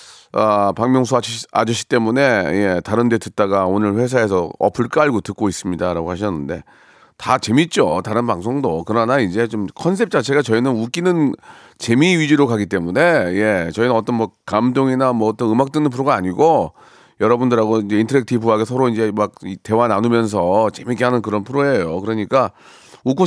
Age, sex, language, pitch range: 40-59, male, Korean, 110-150 Hz